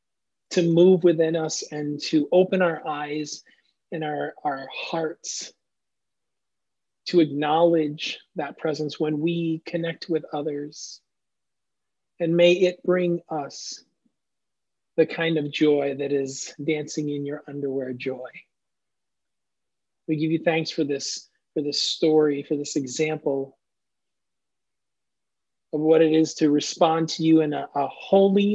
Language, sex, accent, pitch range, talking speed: English, male, American, 145-165 Hz, 130 wpm